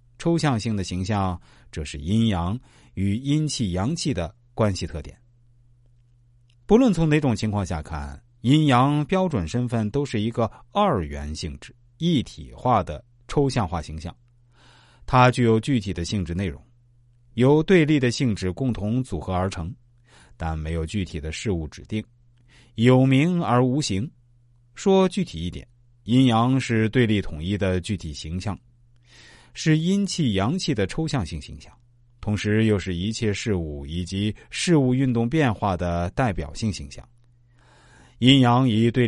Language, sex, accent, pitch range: Chinese, male, native, 95-125 Hz